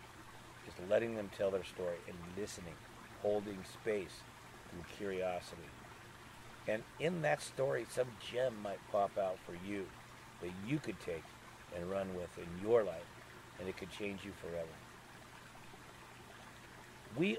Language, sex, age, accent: English, male, 50-69, American